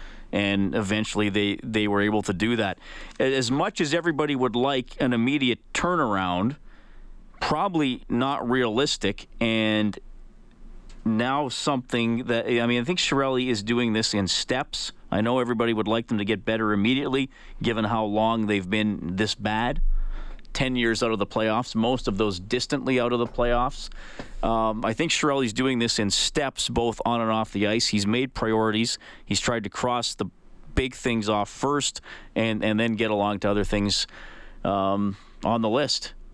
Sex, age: male, 40-59